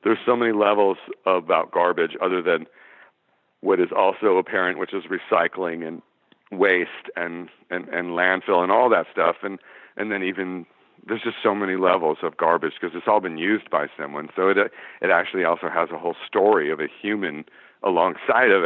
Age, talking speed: 50-69, 185 wpm